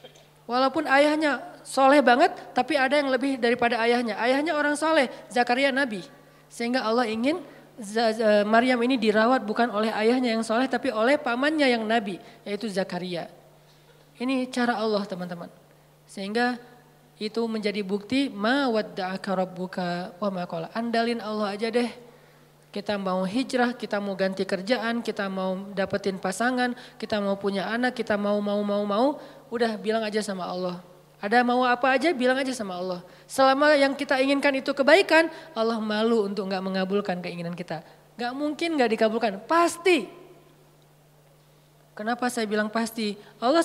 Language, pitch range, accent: Indonesian, 205-275 Hz, native